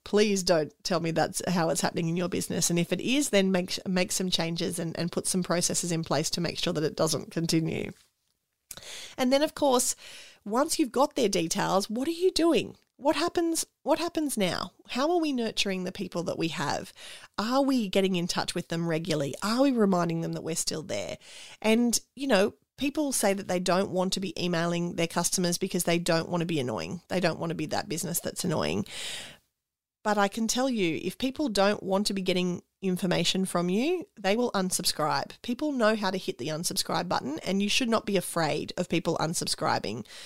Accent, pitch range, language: Australian, 170-220 Hz, English